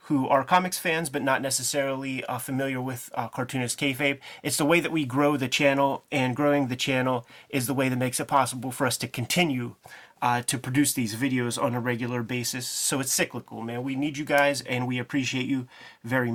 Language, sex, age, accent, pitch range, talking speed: English, male, 30-49, American, 125-150 Hz, 215 wpm